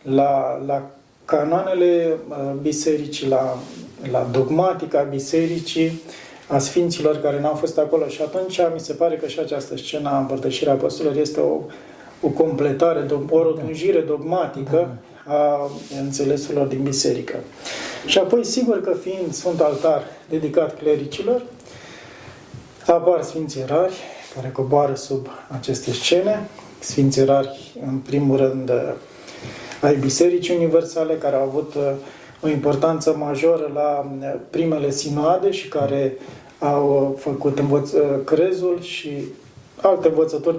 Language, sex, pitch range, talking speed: Romanian, male, 140-165 Hz, 115 wpm